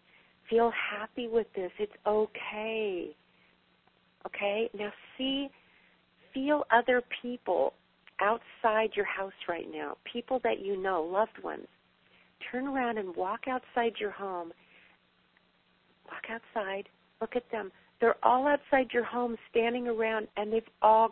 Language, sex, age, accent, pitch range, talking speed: English, female, 40-59, American, 195-255 Hz, 130 wpm